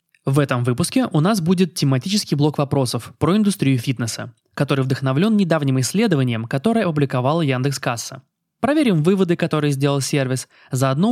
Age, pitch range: 20-39, 130-180 Hz